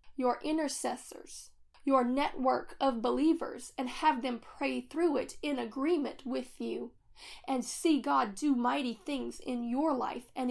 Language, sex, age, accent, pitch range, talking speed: English, female, 30-49, American, 250-310 Hz, 150 wpm